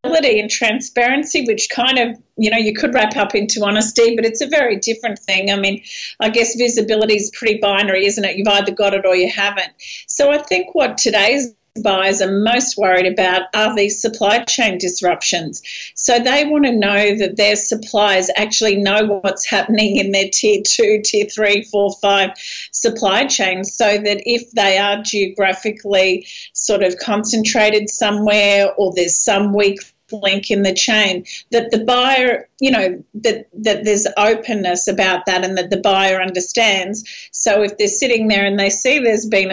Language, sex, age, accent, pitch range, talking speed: English, female, 40-59, Australian, 195-225 Hz, 180 wpm